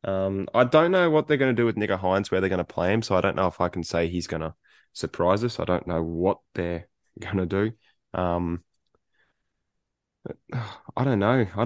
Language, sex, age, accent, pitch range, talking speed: English, male, 20-39, Australian, 90-105 Hz, 225 wpm